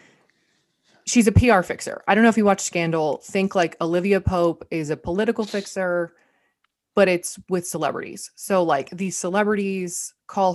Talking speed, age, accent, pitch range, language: 160 wpm, 20-39, American, 160-195 Hz, English